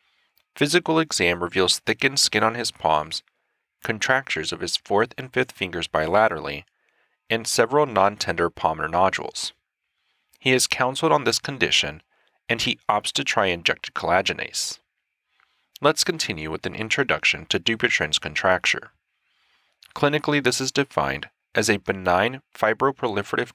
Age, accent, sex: 30-49, American, male